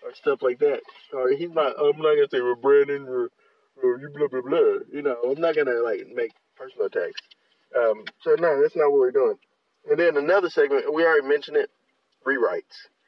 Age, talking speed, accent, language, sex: 20-39, 205 wpm, American, English, male